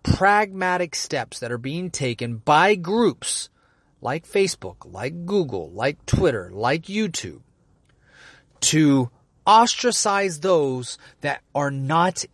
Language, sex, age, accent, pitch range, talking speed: English, male, 30-49, American, 130-190 Hz, 105 wpm